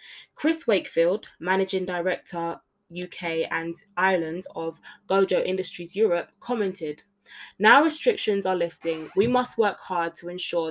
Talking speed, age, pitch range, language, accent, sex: 125 wpm, 20-39, 170-225 Hz, English, British, female